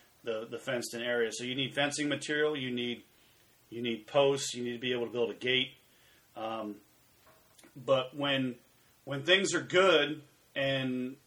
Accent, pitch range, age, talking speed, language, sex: American, 115-135 Hz, 40-59, 170 wpm, English, male